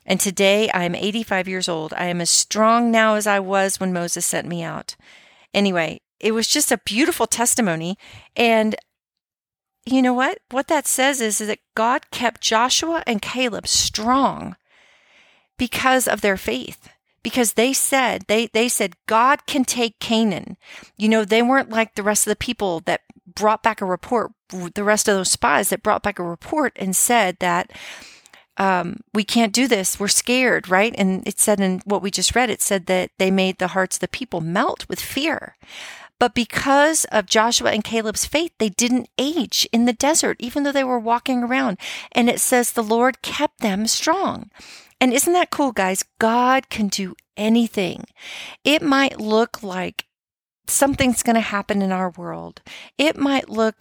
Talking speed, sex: 180 wpm, female